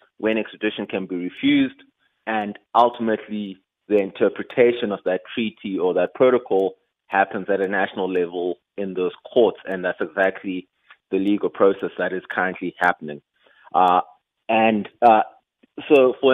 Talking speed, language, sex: 140 wpm, English, male